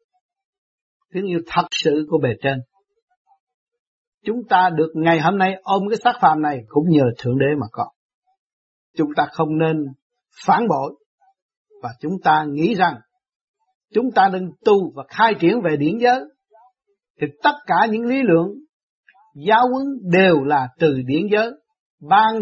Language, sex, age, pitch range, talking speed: Vietnamese, male, 60-79, 150-245 Hz, 155 wpm